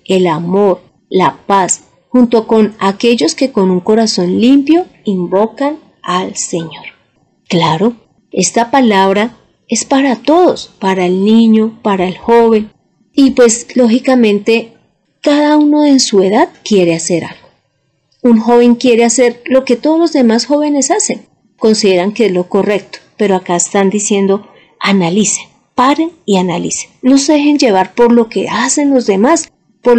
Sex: female